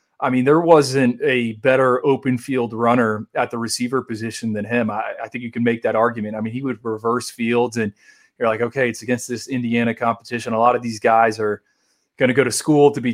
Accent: American